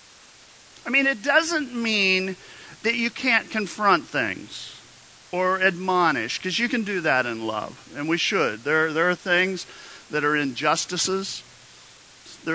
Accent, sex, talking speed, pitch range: American, male, 145 wpm, 140-185 Hz